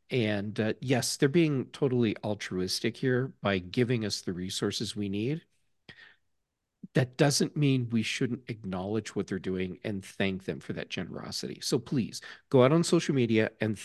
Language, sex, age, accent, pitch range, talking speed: English, male, 50-69, American, 110-140 Hz, 165 wpm